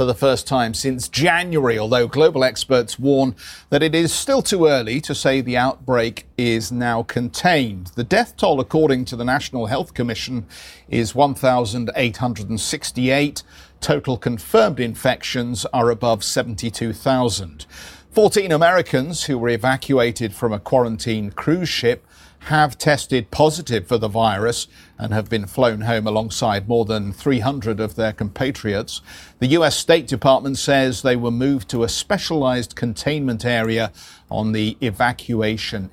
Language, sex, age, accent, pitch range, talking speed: English, male, 50-69, British, 110-140 Hz, 140 wpm